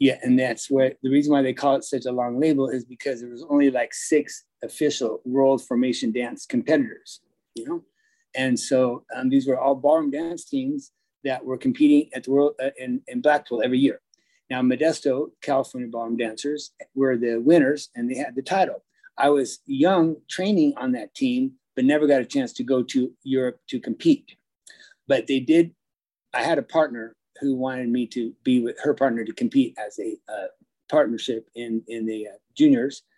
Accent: American